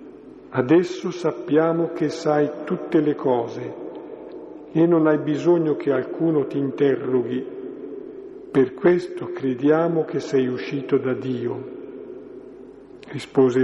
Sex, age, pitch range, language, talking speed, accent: male, 50-69, 135-185 Hz, Italian, 105 wpm, native